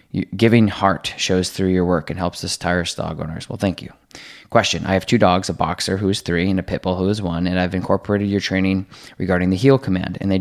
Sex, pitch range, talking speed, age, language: male, 90-100 Hz, 240 wpm, 20-39, English